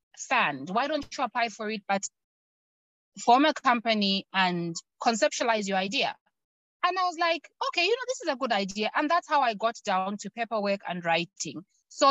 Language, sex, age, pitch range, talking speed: English, female, 20-39, 200-255 Hz, 190 wpm